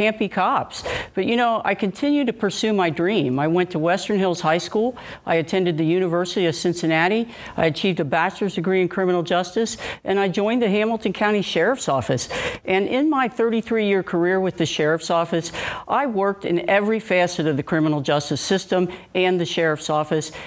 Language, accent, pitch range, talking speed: English, American, 170-210 Hz, 185 wpm